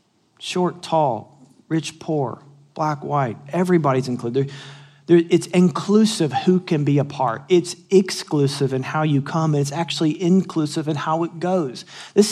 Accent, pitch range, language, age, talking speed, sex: American, 145-185 Hz, English, 40-59, 140 wpm, male